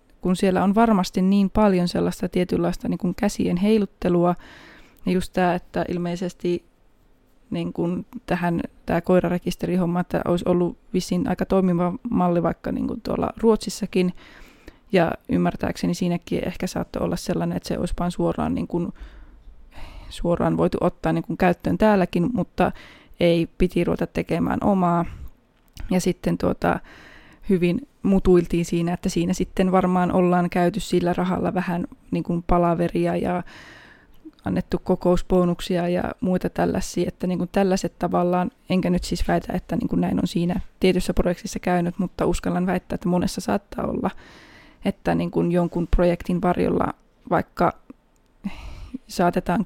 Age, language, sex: 20-39, Finnish, female